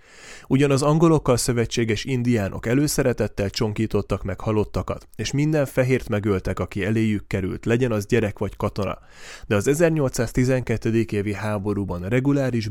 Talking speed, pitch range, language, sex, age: 125 wpm, 100-130 Hz, Hungarian, male, 30-49